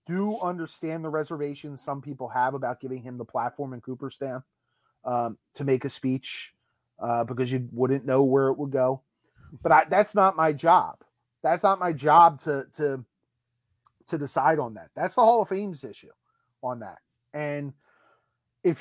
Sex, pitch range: male, 135-180 Hz